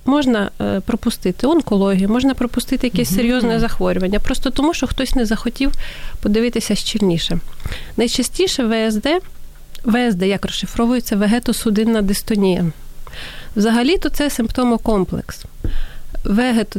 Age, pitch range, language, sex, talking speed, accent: 30-49, 195-245 Hz, Ukrainian, female, 95 wpm, native